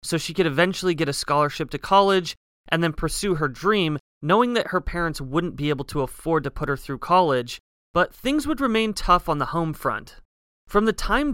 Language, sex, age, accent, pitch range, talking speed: English, male, 30-49, American, 145-190 Hz, 210 wpm